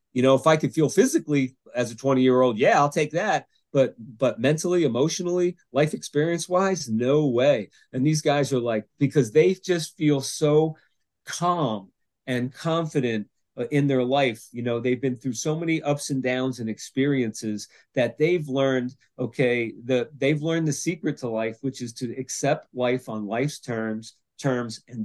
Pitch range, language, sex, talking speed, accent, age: 120-145 Hz, English, male, 175 wpm, American, 40-59